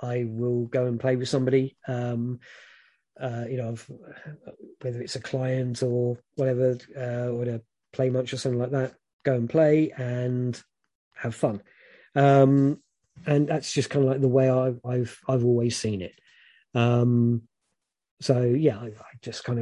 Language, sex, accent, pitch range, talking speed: English, male, British, 125-145 Hz, 165 wpm